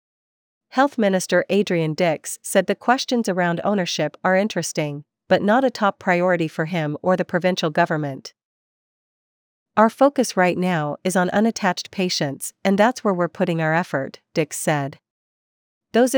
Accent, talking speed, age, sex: American, 150 wpm, 40-59, female